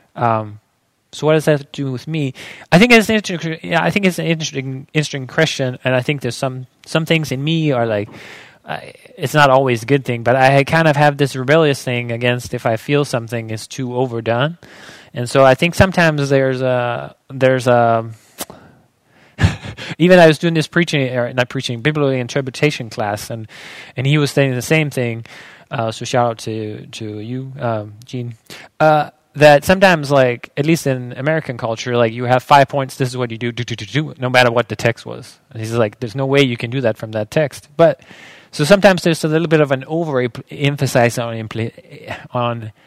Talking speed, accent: 205 wpm, American